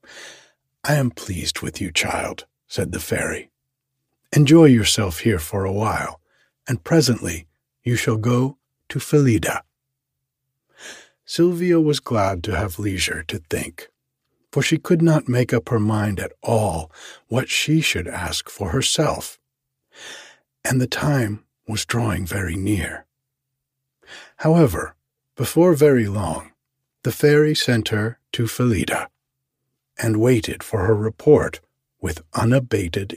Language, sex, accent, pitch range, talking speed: English, male, American, 105-140 Hz, 125 wpm